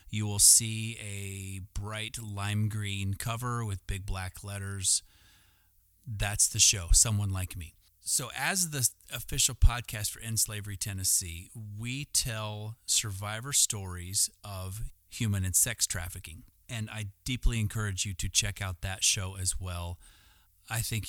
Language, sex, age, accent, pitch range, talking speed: English, male, 30-49, American, 95-110 Hz, 140 wpm